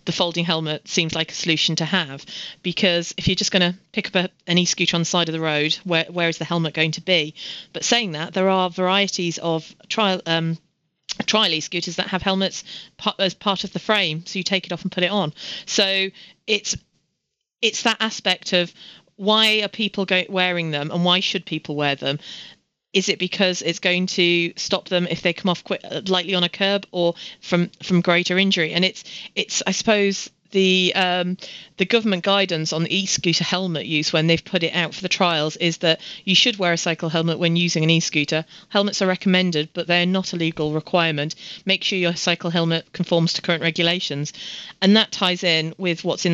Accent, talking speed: British, 205 wpm